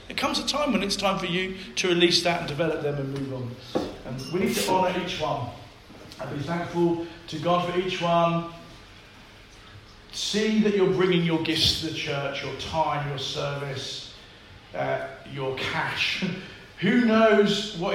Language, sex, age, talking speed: English, male, 40-59, 175 wpm